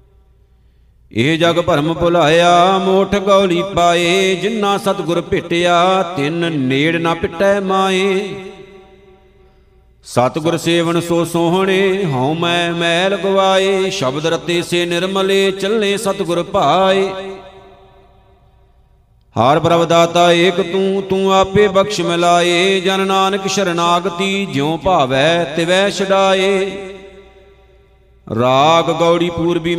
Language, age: Punjabi, 50-69